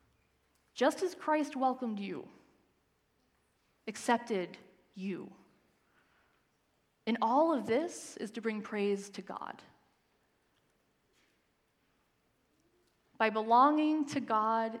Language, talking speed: English, 85 wpm